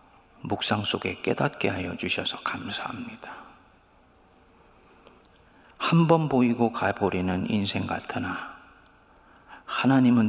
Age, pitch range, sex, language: 40-59, 95-120 Hz, male, Korean